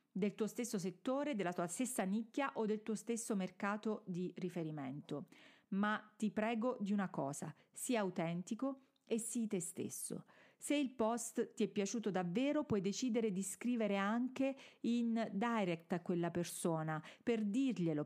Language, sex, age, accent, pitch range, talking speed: Italian, female, 40-59, native, 180-230 Hz, 155 wpm